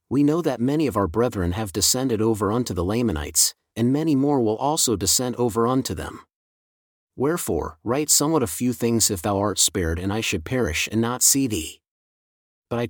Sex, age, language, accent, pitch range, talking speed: male, 40-59, English, American, 100-130 Hz, 195 wpm